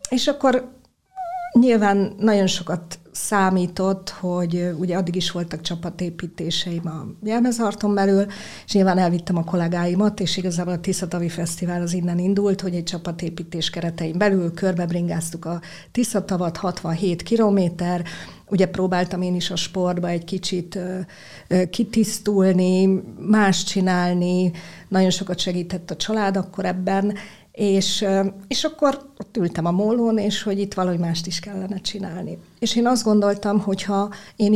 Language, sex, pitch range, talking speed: Hungarian, female, 175-200 Hz, 140 wpm